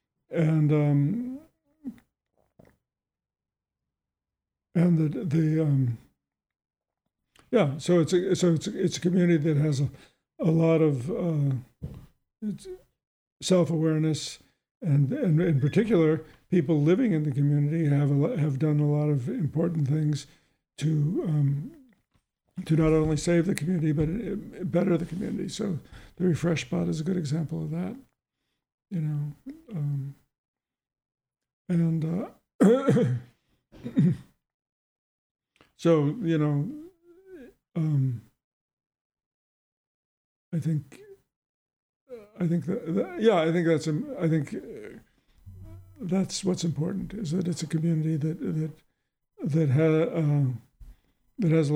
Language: English